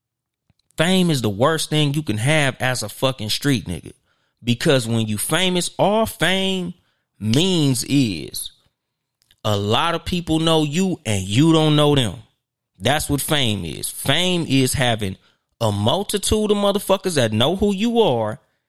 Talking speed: 155 wpm